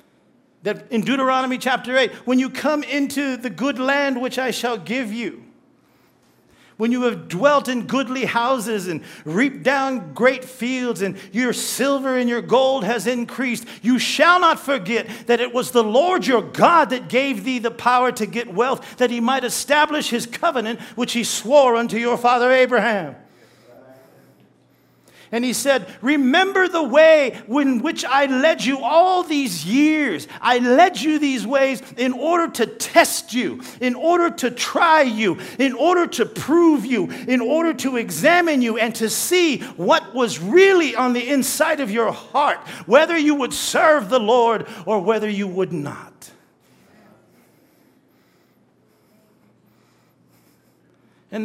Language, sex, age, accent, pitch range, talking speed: English, male, 50-69, American, 230-280 Hz, 155 wpm